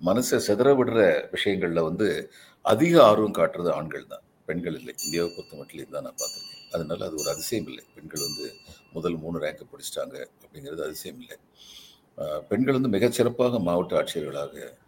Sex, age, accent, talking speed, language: male, 50-69, native, 135 wpm, Tamil